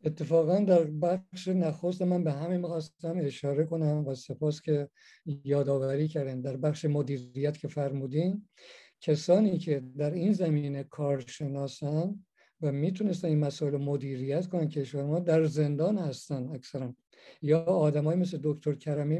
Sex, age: male, 50-69